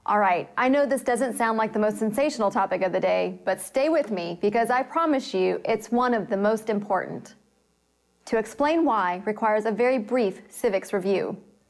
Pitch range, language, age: 205-270 Hz, English, 30-49